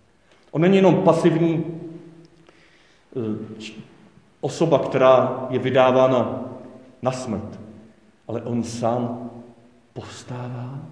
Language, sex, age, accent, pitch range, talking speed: Czech, male, 40-59, native, 125-150 Hz, 75 wpm